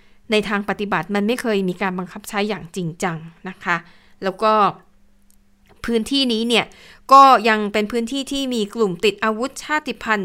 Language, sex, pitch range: Thai, female, 200-260 Hz